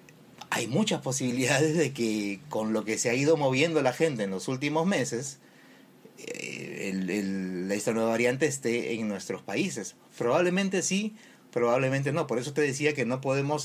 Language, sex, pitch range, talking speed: Spanish, male, 110-150 Hz, 165 wpm